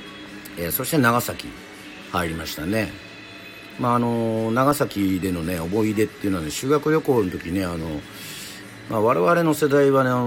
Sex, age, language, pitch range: male, 50-69, Japanese, 90-135 Hz